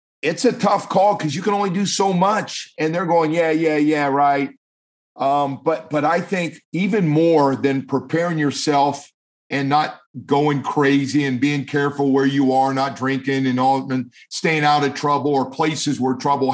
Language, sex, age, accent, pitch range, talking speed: English, male, 50-69, American, 140-185 Hz, 185 wpm